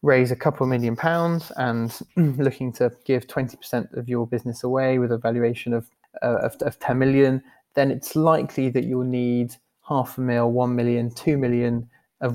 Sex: male